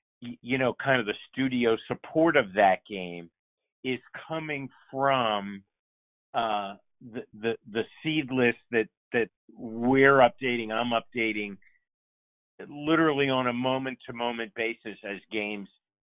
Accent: American